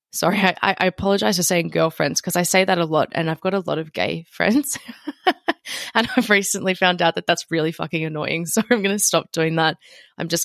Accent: Australian